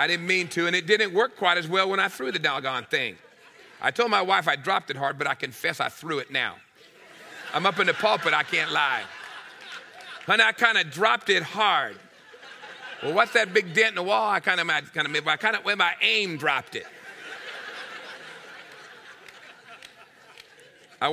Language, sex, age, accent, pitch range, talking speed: English, male, 40-59, American, 125-185 Hz, 185 wpm